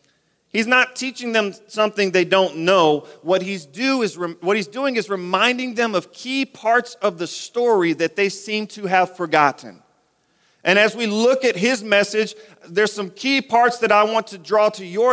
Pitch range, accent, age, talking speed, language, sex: 150-215 Hz, American, 40-59, 180 wpm, English, male